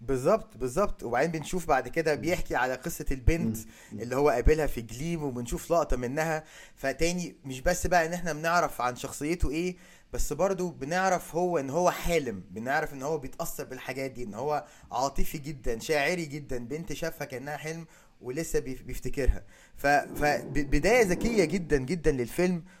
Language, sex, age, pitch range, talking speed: Arabic, male, 20-39, 140-185 Hz, 155 wpm